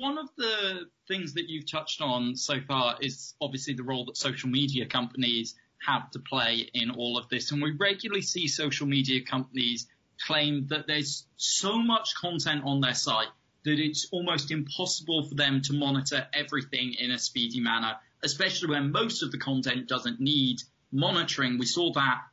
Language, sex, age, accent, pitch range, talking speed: English, male, 20-39, British, 125-155 Hz, 175 wpm